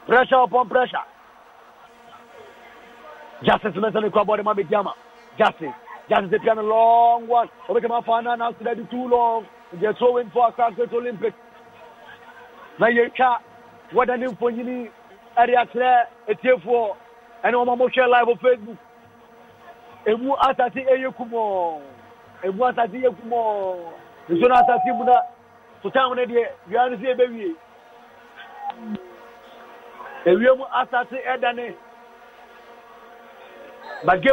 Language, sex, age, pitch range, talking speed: English, male, 40-59, 235-255 Hz, 120 wpm